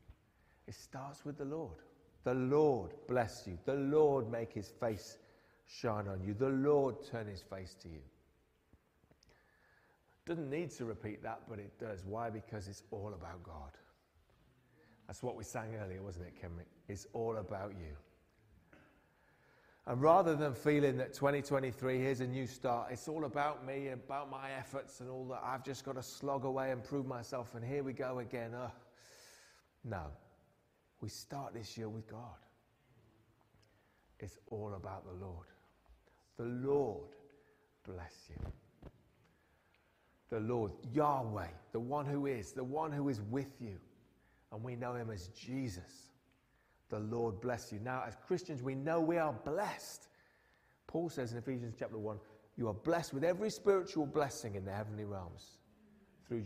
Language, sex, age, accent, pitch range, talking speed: English, male, 40-59, British, 105-135 Hz, 160 wpm